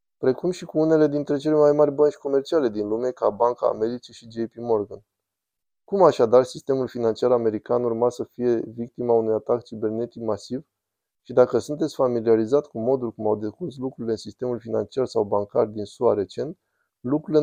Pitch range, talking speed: 110-135 Hz, 170 wpm